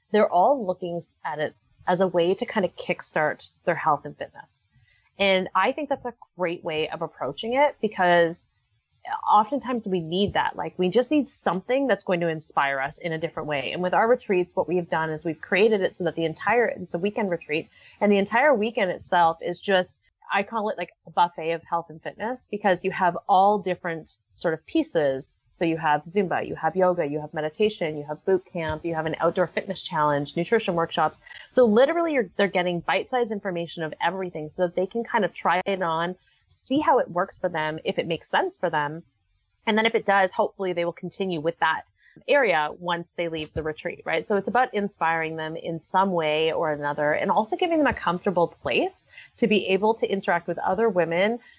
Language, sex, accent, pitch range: English, female, American, 160-210 Hz